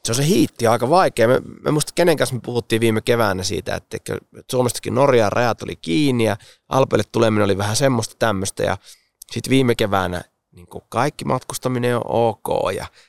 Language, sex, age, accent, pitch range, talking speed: Finnish, male, 30-49, native, 100-125 Hz, 175 wpm